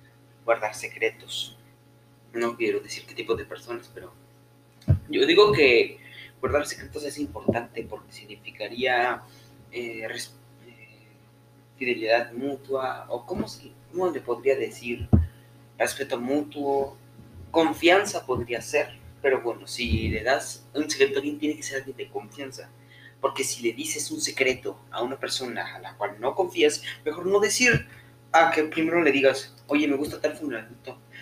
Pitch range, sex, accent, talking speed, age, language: 120-160 Hz, male, Mexican, 150 wpm, 30-49, Spanish